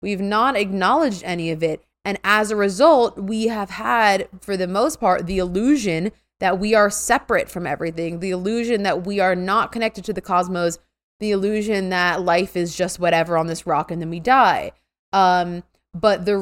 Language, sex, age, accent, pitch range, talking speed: English, female, 20-39, American, 180-215 Hz, 190 wpm